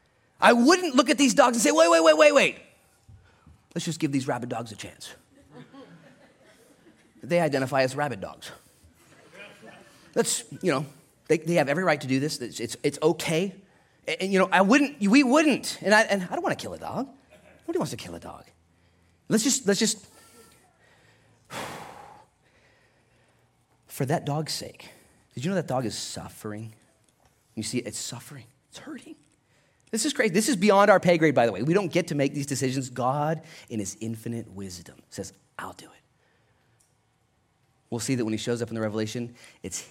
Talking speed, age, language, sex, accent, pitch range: 185 wpm, 30-49, English, male, American, 110-165 Hz